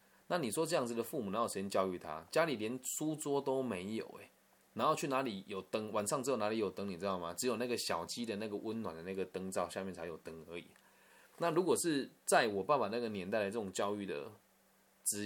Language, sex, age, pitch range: Chinese, male, 20-39, 95-120 Hz